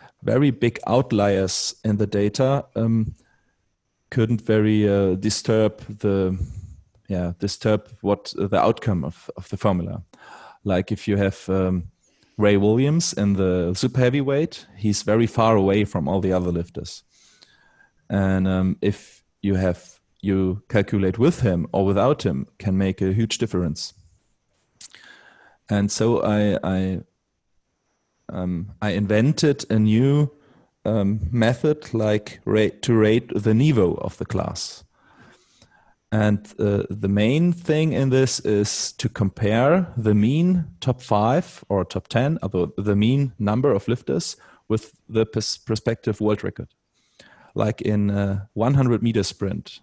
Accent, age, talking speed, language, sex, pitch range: German, 30-49, 135 wpm, English, male, 95-115 Hz